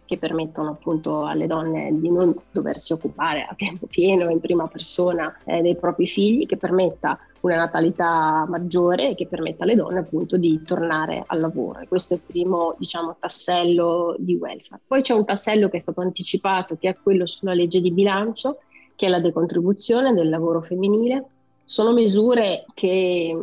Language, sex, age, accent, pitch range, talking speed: Italian, female, 30-49, native, 170-190 Hz, 170 wpm